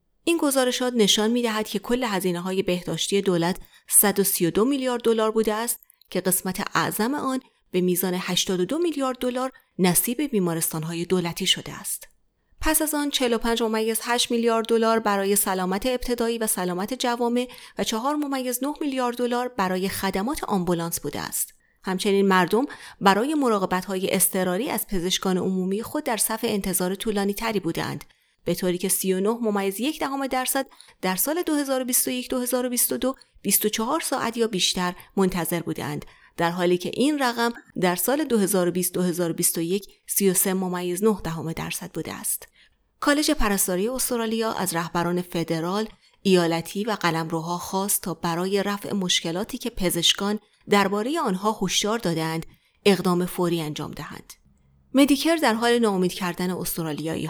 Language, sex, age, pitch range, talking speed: Persian, female, 30-49, 180-240 Hz, 135 wpm